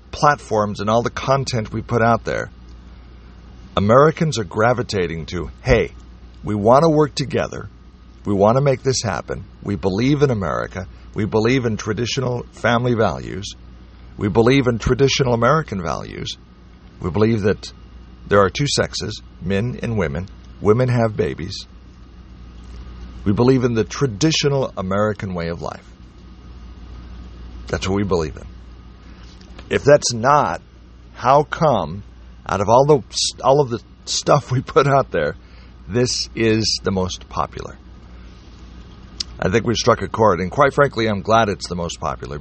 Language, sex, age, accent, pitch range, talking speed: English, male, 50-69, American, 85-125 Hz, 150 wpm